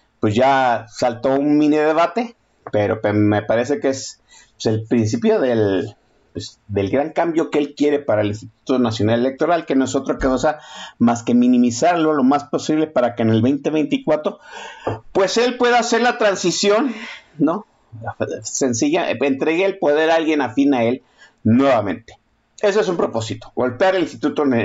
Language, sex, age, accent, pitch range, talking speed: Spanish, male, 50-69, Mexican, 120-185 Hz, 165 wpm